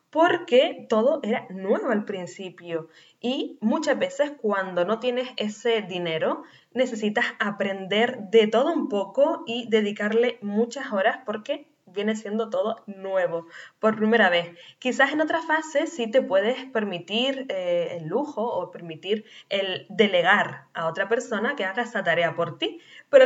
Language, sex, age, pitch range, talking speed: Spanish, female, 10-29, 190-255 Hz, 145 wpm